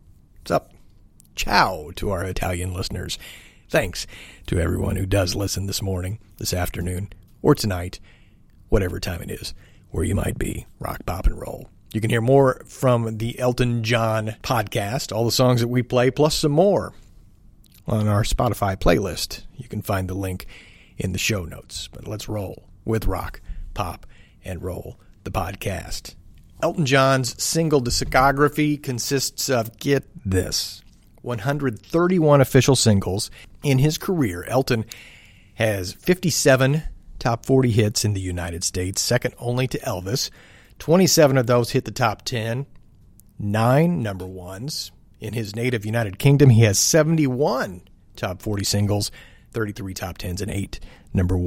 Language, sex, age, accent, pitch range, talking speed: English, male, 40-59, American, 95-130 Hz, 145 wpm